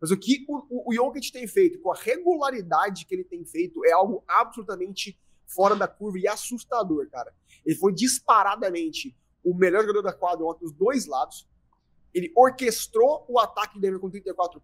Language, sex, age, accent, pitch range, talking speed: Portuguese, male, 20-39, Brazilian, 205-270 Hz, 170 wpm